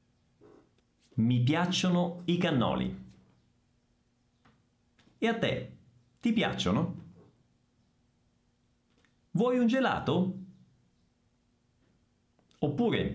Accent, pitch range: native, 105-175 Hz